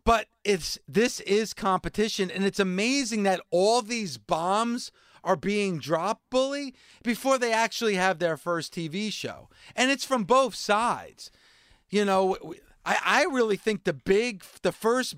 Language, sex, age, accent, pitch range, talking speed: English, male, 40-59, American, 160-215 Hz, 155 wpm